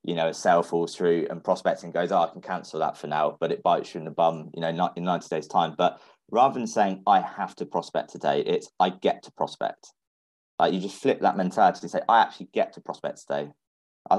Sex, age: male, 20-39